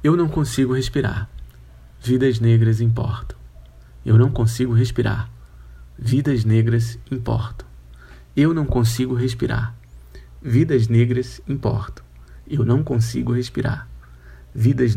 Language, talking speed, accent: Portuguese, 105 wpm, Brazilian